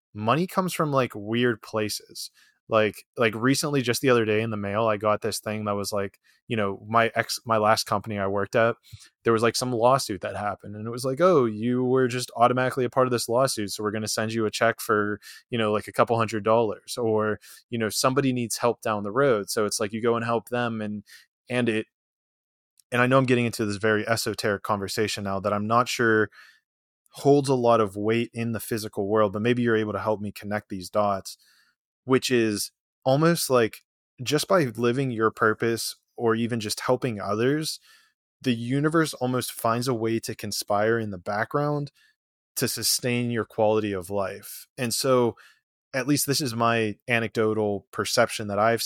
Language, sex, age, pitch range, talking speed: English, male, 20-39, 105-125 Hz, 205 wpm